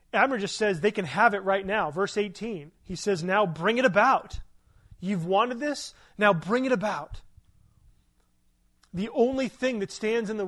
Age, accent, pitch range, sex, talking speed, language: 30-49, American, 150-200 Hz, male, 180 wpm, English